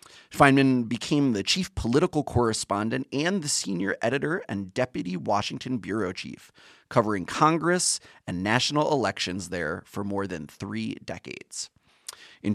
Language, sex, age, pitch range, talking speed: English, male, 30-49, 105-160 Hz, 130 wpm